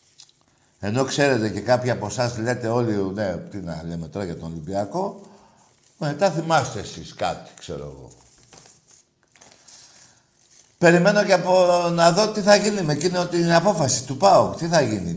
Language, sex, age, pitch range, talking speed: Greek, male, 50-69, 125-175 Hz, 150 wpm